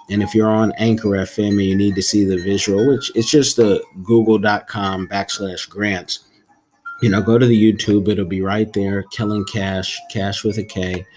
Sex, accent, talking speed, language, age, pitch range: male, American, 195 wpm, English, 30-49, 95-110 Hz